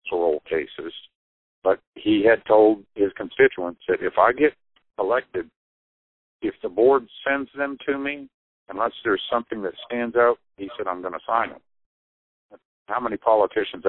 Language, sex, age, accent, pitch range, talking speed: English, male, 50-69, American, 85-130 Hz, 155 wpm